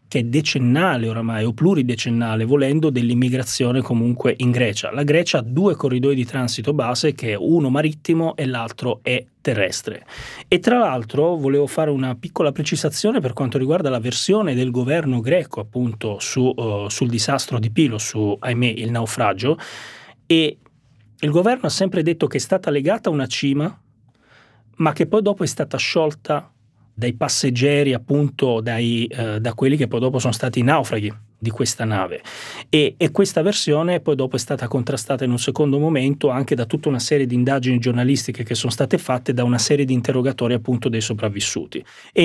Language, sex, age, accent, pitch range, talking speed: Italian, male, 30-49, native, 120-150 Hz, 175 wpm